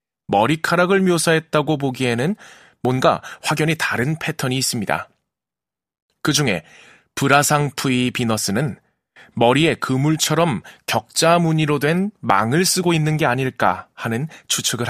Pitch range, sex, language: 120-160 Hz, male, Korean